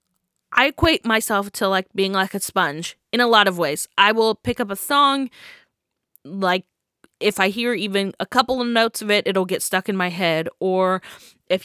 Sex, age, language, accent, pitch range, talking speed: female, 20-39, English, American, 190-245 Hz, 200 wpm